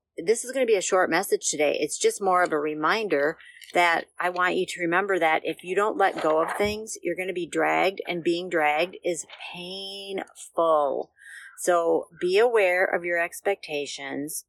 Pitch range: 165-200 Hz